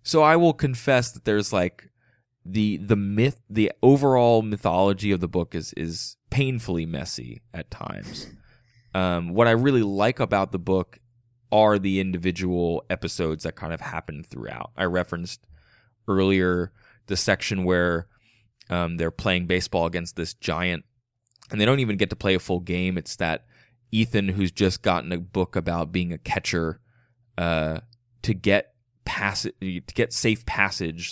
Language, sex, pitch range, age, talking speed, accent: English, male, 85-110 Hz, 20-39, 160 wpm, American